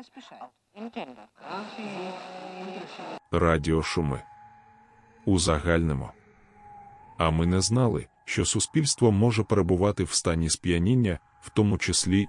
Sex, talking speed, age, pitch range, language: male, 80 wpm, 30-49, 85-115 Hz, Ukrainian